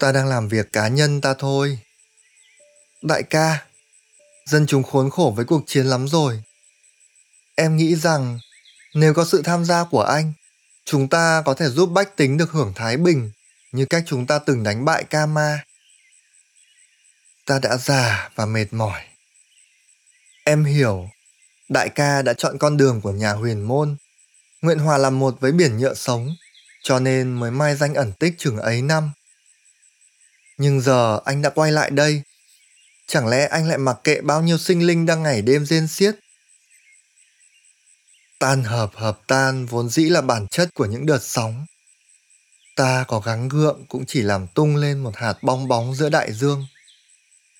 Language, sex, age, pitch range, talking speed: Vietnamese, male, 20-39, 125-155 Hz, 170 wpm